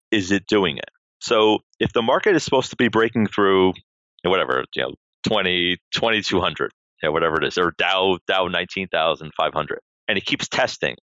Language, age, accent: English, 30-49, American